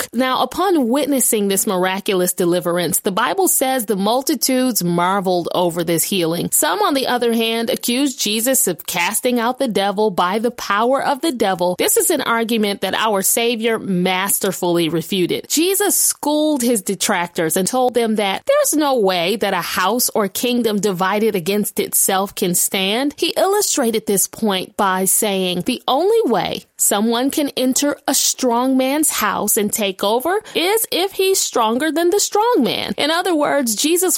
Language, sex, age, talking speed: English, female, 30-49, 165 wpm